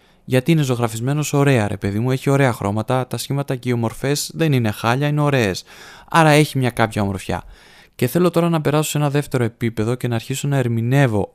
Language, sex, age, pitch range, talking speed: Greek, male, 20-39, 110-135 Hz, 205 wpm